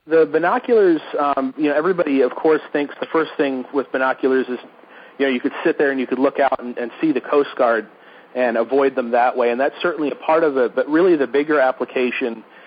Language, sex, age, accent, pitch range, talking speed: English, male, 40-59, American, 125-150 Hz, 230 wpm